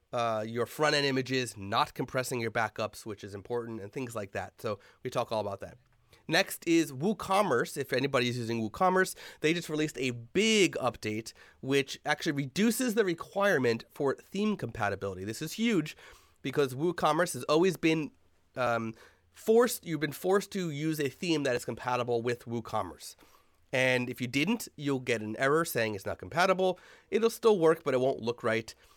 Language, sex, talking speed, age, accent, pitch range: English, male, 175 wpm, 30-49, American, 115-155 Hz